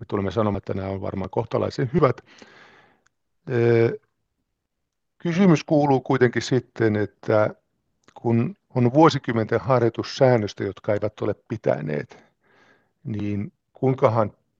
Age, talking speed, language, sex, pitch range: 50-69, 100 wpm, Finnish, male, 100-125 Hz